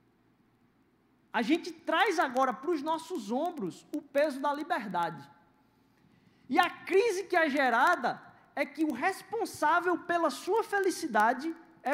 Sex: male